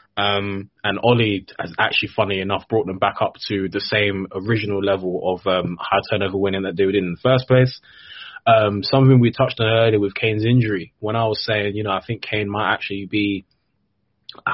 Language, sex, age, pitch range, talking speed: English, male, 20-39, 100-115 Hz, 205 wpm